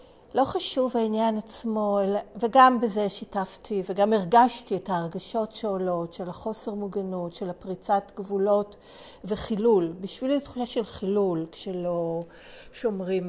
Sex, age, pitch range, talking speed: female, 50-69, 185-220 Hz, 115 wpm